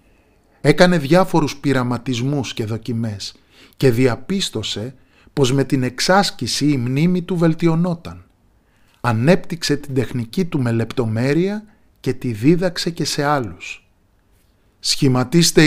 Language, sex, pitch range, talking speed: Greek, male, 110-160 Hz, 105 wpm